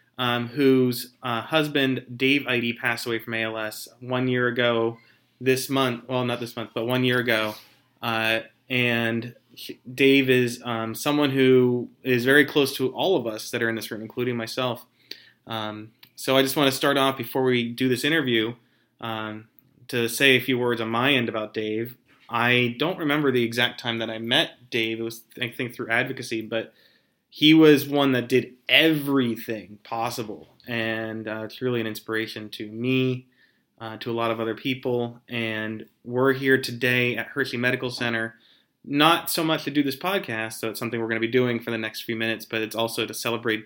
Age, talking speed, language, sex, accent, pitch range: 20-39, 190 wpm, English, male, American, 115-130 Hz